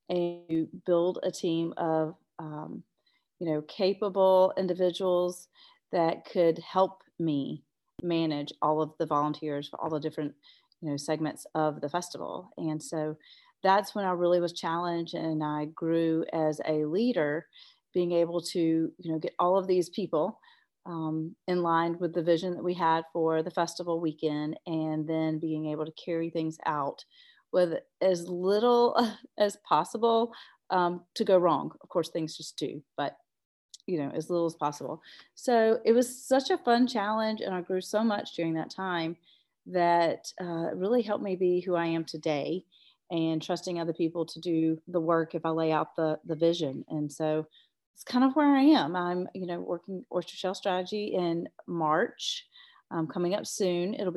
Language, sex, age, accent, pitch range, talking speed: English, female, 40-59, American, 160-190 Hz, 175 wpm